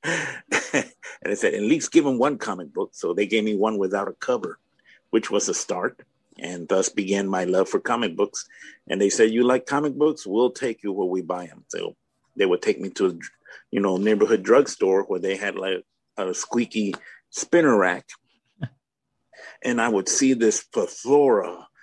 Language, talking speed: English, 190 wpm